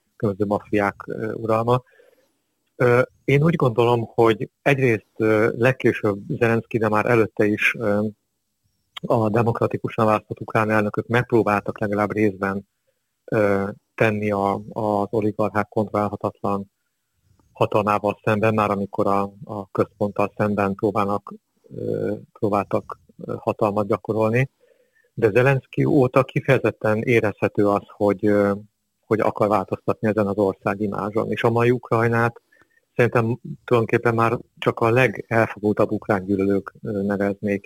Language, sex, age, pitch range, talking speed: Hungarian, male, 50-69, 105-120 Hz, 100 wpm